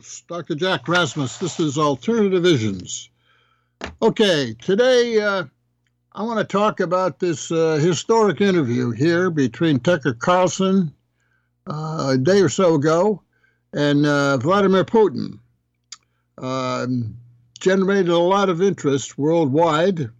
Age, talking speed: 60-79, 120 wpm